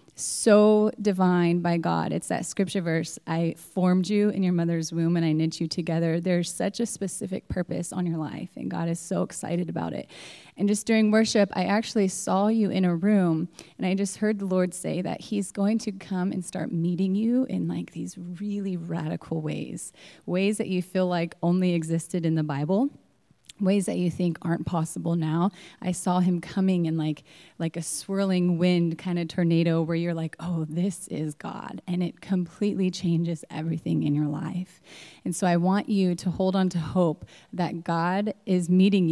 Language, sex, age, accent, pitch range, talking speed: English, female, 30-49, American, 165-195 Hz, 195 wpm